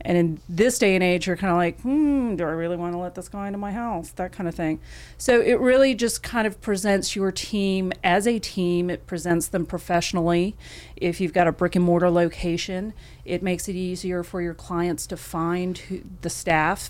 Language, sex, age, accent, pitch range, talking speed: English, female, 40-59, American, 170-185 Hz, 215 wpm